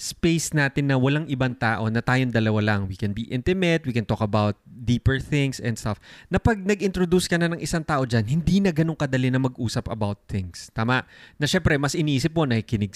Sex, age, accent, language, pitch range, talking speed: male, 20-39, native, Filipino, 115-155 Hz, 215 wpm